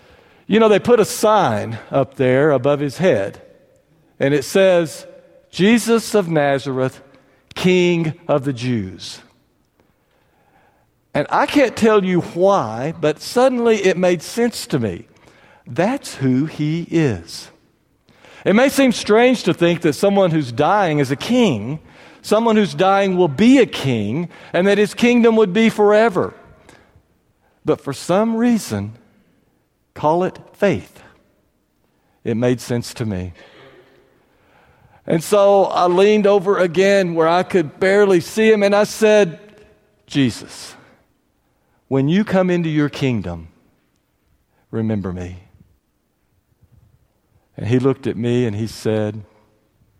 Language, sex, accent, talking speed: English, male, American, 130 wpm